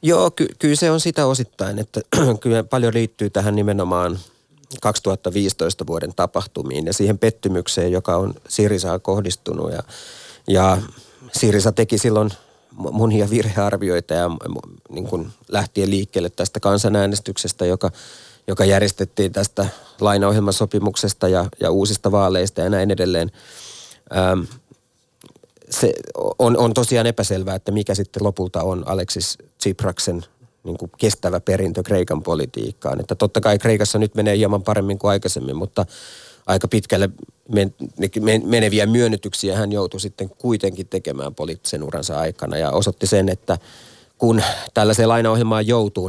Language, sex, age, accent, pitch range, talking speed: Finnish, male, 30-49, native, 95-110 Hz, 125 wpm